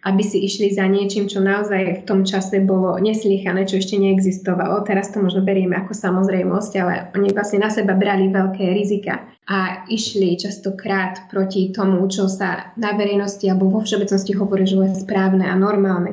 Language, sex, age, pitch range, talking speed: Slovak, female, 20-39, 190-215 Hz, 175 wpm